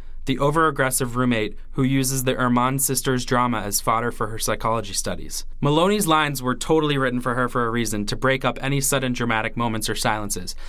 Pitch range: 110-135 Hz